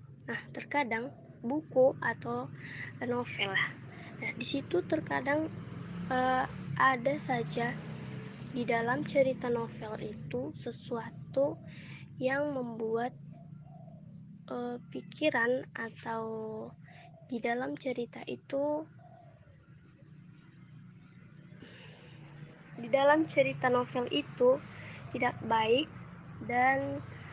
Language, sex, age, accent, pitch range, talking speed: Indonesian, female, 20-39, native, 160-260 Hz, 75 wpm